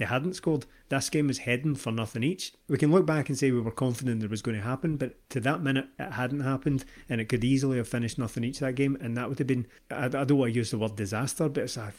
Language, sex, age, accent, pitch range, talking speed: English, male, 30-49, British, 115-135 Hz, 285 wpm